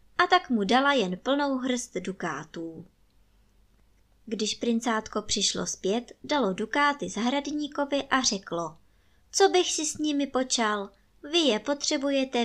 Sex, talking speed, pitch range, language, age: male, 125 wpm, 180-260 Hz, Czech, 20-39